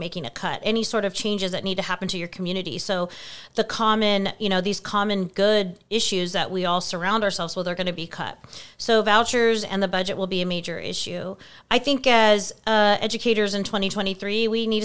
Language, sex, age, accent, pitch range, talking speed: English, female, 30-49, American, 185-220 Hz, 215 wpm